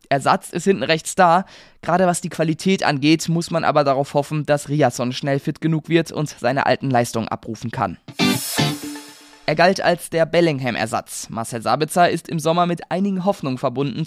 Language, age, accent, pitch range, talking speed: German, 20-39, German, 145-185 Hz, 175 wpm